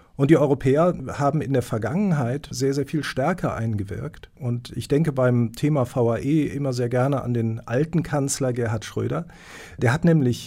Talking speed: 170 wpm